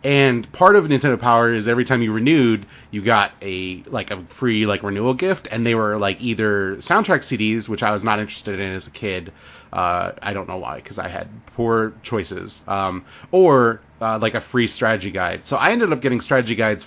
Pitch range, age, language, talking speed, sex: 100-130 Hz, 30-49, English, 215 wpm, male